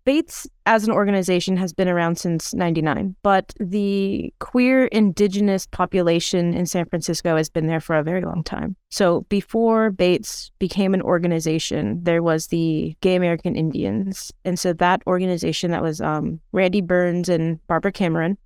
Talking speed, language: 160 wpm, English